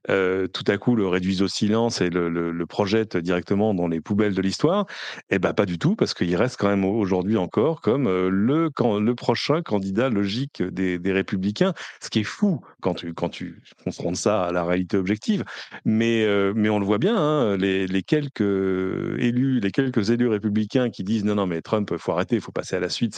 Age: 40-59